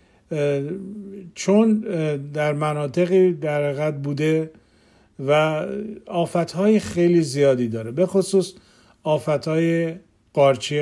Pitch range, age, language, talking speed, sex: 140-165 Hz, 50-69, Persian, 80 wpm, male